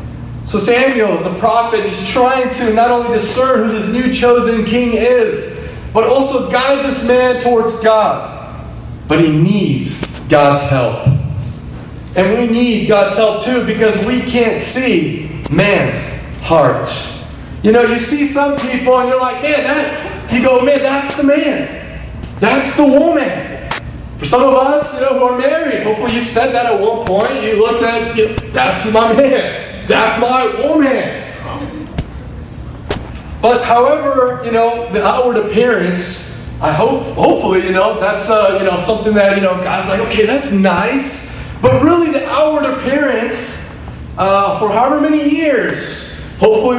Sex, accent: male, American